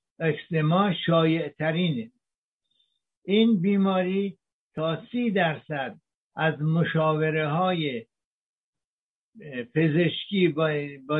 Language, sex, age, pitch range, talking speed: Persian, male, 60-79, 155-195 Hz, 65 wpm